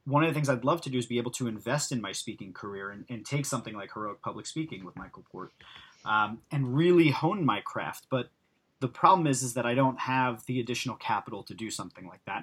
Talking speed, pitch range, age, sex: 245 wpm, 115-145 Hz, 30-49, male